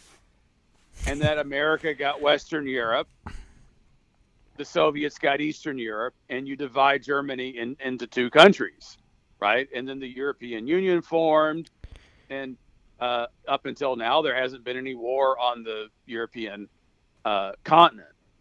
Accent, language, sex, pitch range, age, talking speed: American, English, male, 120-150 Hz, 50-69, 130 wpm